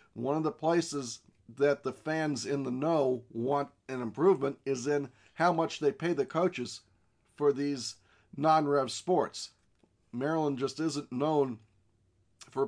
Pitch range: 125-160 Hz